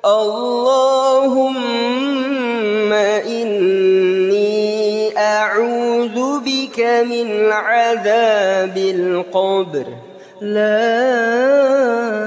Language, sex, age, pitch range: Indonesian, female, 20-39, 210-255 Hz